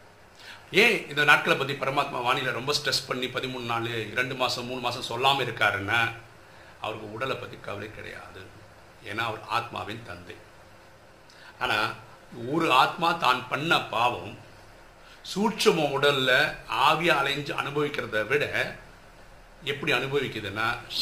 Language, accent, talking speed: Tamil, native, 115 wpm